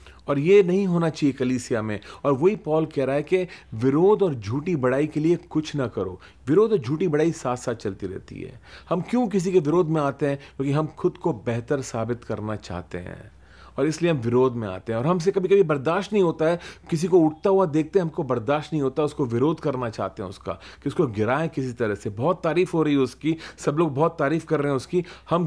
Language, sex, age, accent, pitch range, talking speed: Hindi, male, 30-49, native, 130-180 Hz, 240 wpm